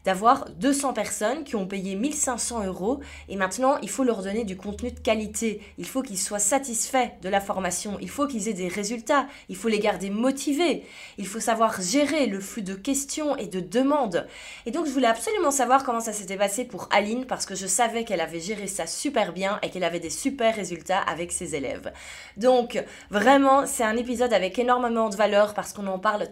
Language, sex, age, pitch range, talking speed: French, female, 20-39, 195-260 Hz, 210 wpm